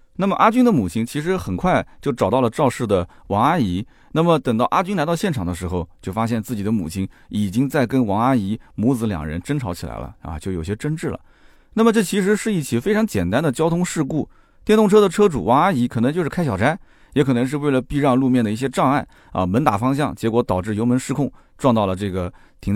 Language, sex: Chinese, male